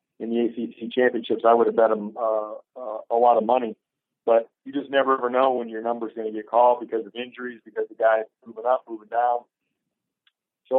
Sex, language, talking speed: male, English, 215 wpm